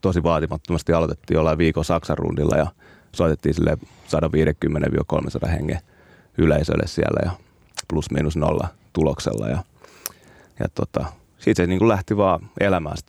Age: 30-49